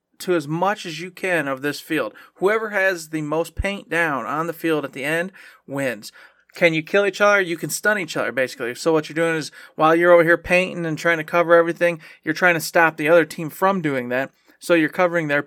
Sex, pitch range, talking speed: male, 140-170 Hz, 240 wpm